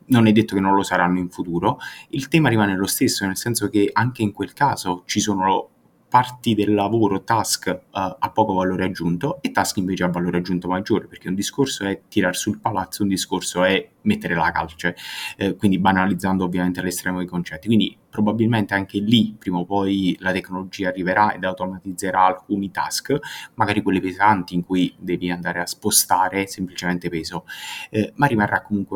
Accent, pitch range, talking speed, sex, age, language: native, 95-110 Hz, 180 wpm, male, 20-39, Italian